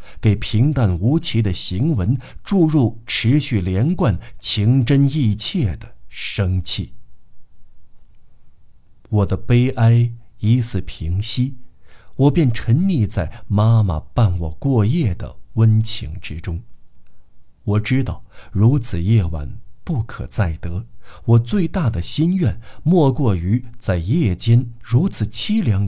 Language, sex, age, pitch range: Chinese, male, 50-69, 95-120 Hz